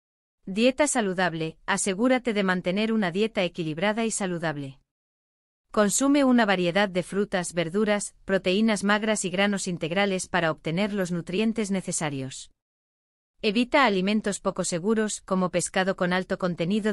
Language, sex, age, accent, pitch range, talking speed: Spanish, female, 30-49, Spanish, 170-210 Hz, 125 wpm